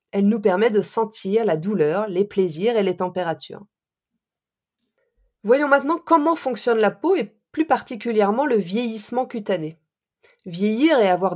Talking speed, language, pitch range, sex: 145 wpm, French, 195-265 Hz, female